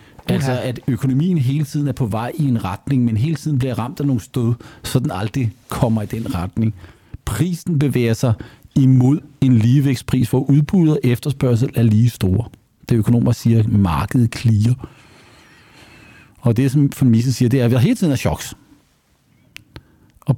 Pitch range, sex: 120-150 Hz, male